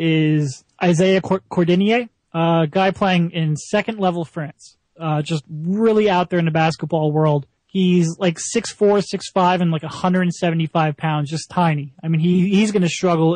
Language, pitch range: English, 160-195 Hz